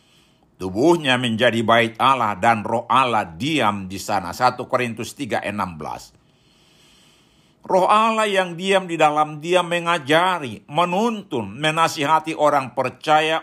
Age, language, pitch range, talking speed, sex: 60-79, Indonesian, 125-170 Hz, 110 wpm, male